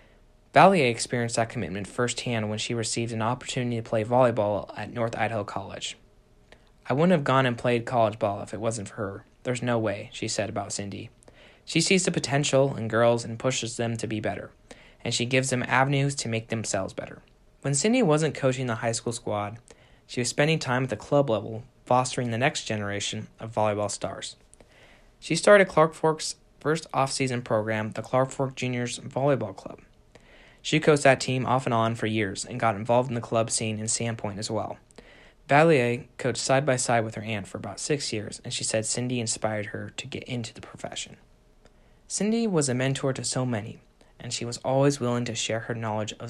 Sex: male